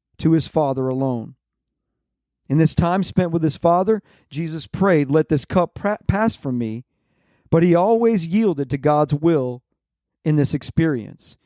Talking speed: 150 wpm